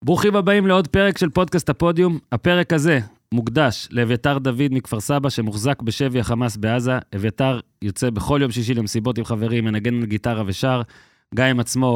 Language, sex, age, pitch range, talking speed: Hebrew, male, 20-39, 105-130 Hz, 155 wpm